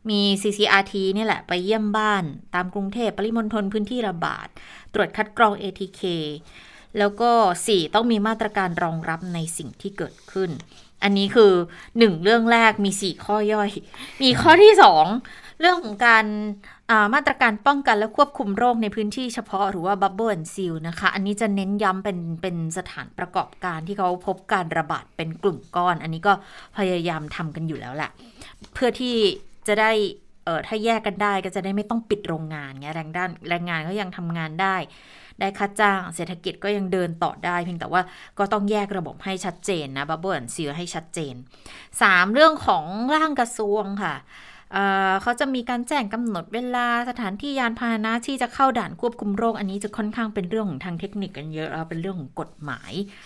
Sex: female